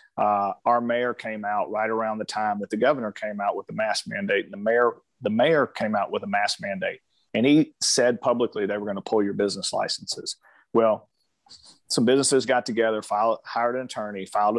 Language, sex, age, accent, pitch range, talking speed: English, male, 40-59, American, 105-125 Hz, 210 wpm